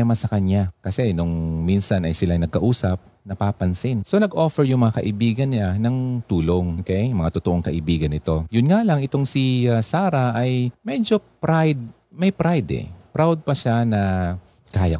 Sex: male